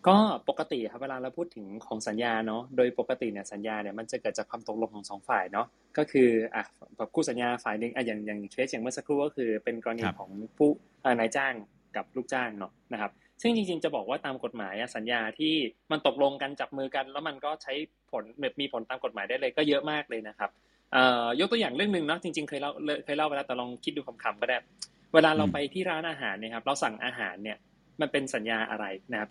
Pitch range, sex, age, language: 115-155 Hz, male, 20-39, English